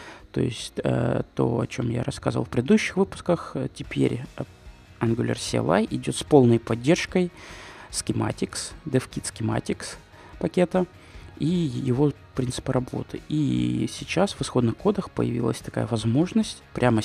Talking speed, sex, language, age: 120 wpm, male, Russian, 20-39